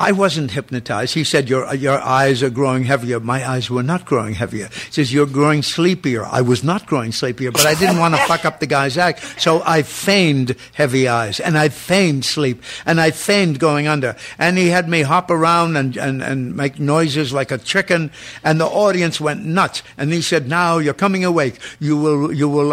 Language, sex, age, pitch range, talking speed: English, male, 60-79, 140-175 Hz, 215 wpm